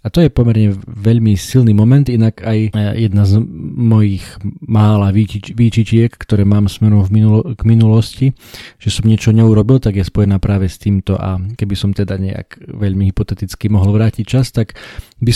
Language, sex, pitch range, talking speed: Slovak, male, 95-110 Hz, 170 wpm